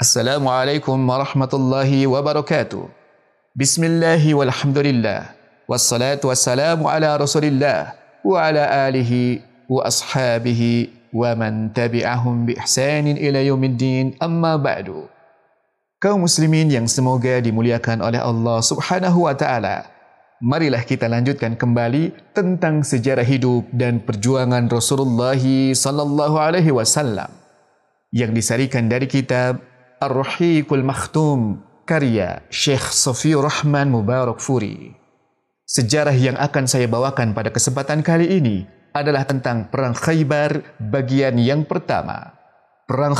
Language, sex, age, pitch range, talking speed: Indonesian, male, 30-49, 120-150 Hz, 100 wpm